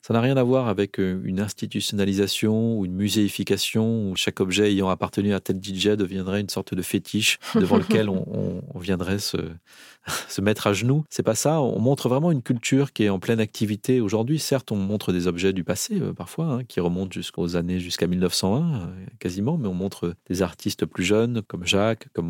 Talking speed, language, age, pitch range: 200 wpm, French, 30-49, 95-120 Hz